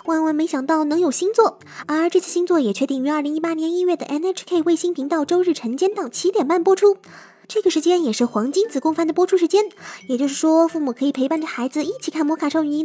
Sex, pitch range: male, 295-370 Hz